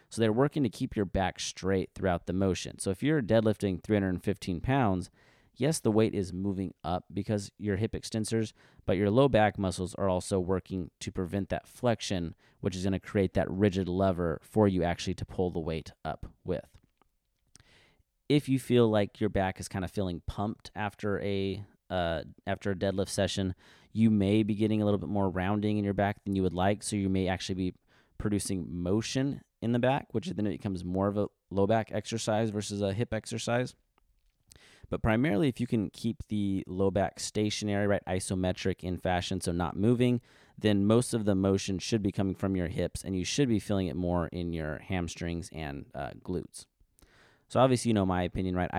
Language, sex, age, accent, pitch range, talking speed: English, male, 30-49, American, 90-110 Hz, 200 wpm